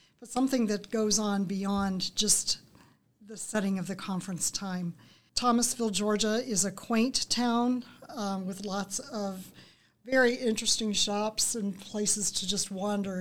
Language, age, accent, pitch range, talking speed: English, 40-59, American, 190-225 Hz, 140 wpm